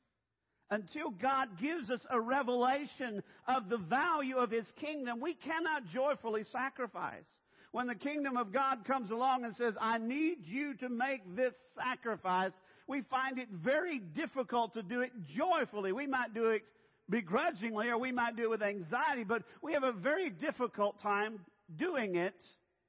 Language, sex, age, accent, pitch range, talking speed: English, male, 50-69, American, 180-265 Hz, 165 wpm